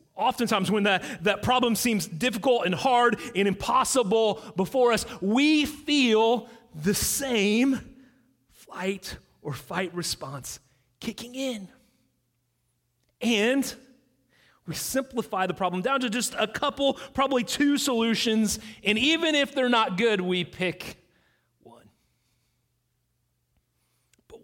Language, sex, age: English, male, 30-49